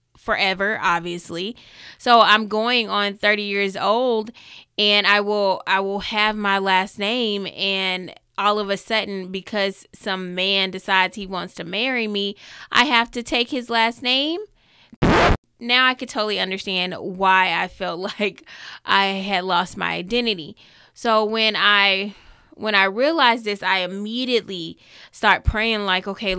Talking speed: 150 wpm